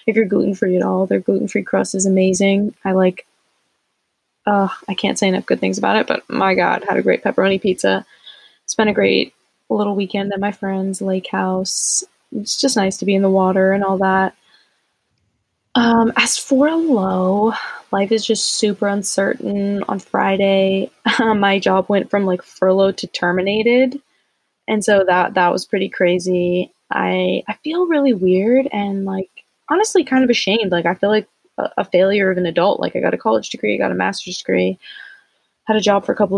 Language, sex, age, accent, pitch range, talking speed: English, female, 10-29, American, 180-205 Hz, 195 wpm